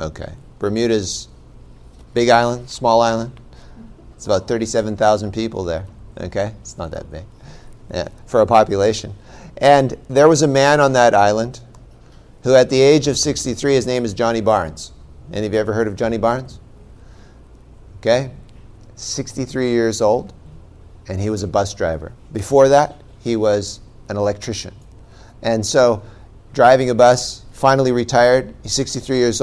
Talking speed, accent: 150 wpm, American